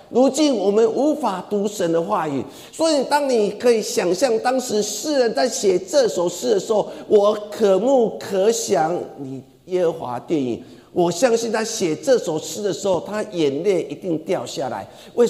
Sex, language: male, Chinese